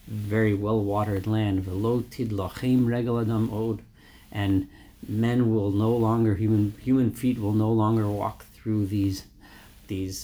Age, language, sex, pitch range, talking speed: 40-59, English, male, 95-110 Hz, 105 wpm